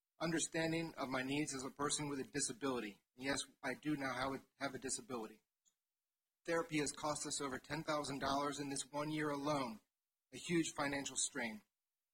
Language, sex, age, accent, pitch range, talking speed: English, male, 40-59, American, 135-160 Hz, 160 wpm